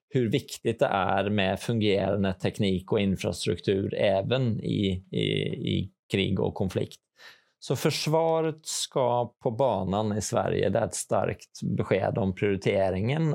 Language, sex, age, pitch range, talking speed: Swedish, male, 20-39, 100-115 Hz, 130 wpm